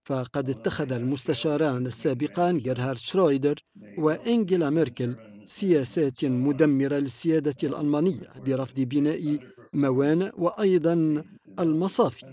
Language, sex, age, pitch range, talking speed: Arabic, male, 50-69, 140-175 Hz, 85 wpm